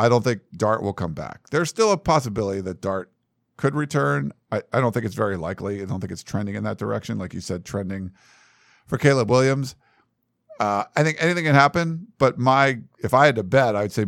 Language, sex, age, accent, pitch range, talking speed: English, male, 50-69, American, 95-120 Hz, 220 wpm